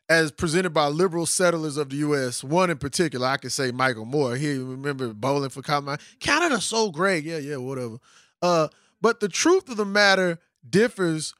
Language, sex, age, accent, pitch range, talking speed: English, male, 20-39, American, 145-195 Hz, 185 wpm